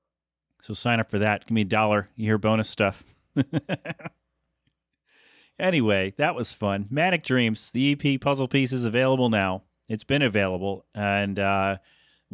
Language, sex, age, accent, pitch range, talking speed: English, male, 30-49, American, 105-140 Hz, 150 wpm